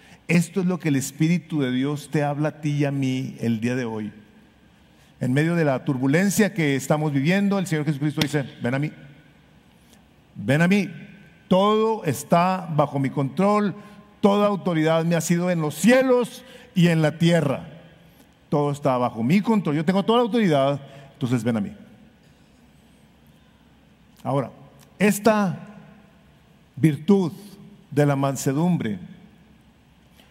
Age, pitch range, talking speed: 50-69, 140-190 Hz, 145 wpm